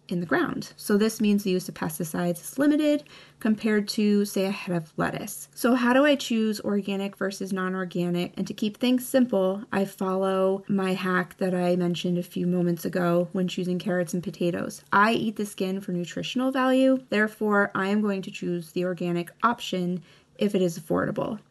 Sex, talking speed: female, 190 wpm